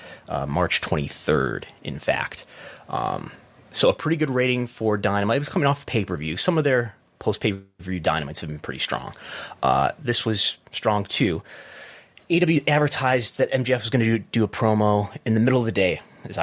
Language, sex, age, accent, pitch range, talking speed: English, male, 30-49, American, 95-125 Hz, 195 wpm